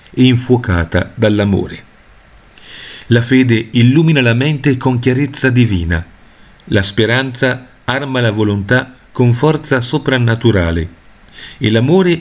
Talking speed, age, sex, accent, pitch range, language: 105 wpm, 40-59, male, native, 100-130 Hz, Italian